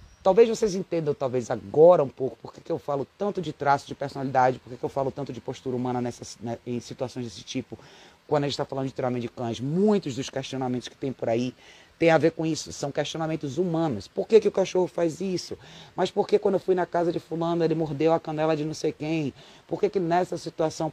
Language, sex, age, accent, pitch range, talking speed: Portuguese, male, 30-49, Brazilian, 125-170 Hz, 245 wpm